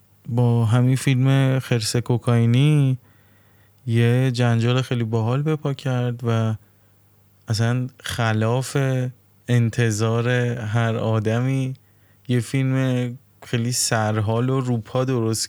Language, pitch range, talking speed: Persian, 105-125 Hz, 95 wpm